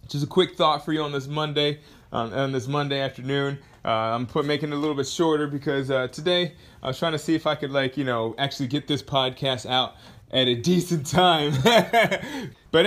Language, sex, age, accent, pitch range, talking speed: English, male, 20-39, American, 120-155 Hz, 220 wpm